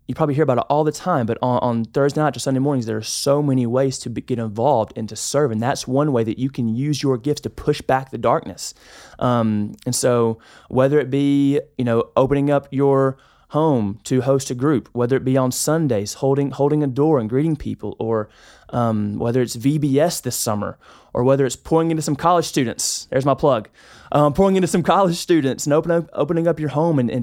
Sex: male